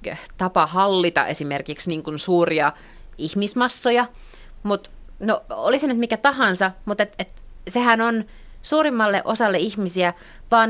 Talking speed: 110 wpm